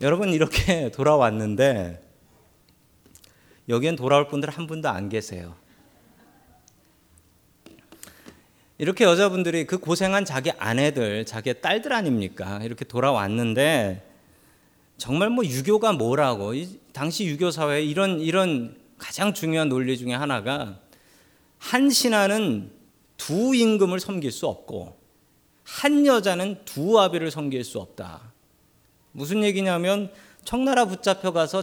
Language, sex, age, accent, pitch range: Korean, male, 40-59, native, 135-205 Hz